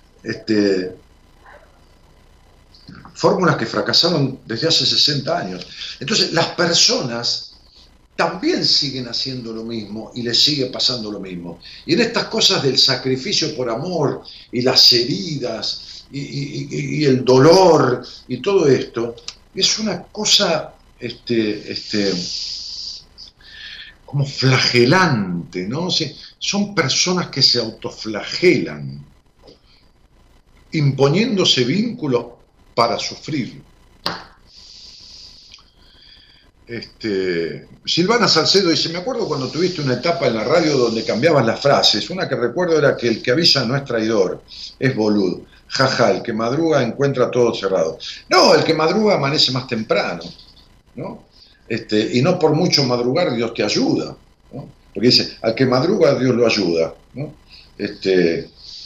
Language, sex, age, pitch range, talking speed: Spanish, male, 50-69, 105-160 Hz, 130 wpm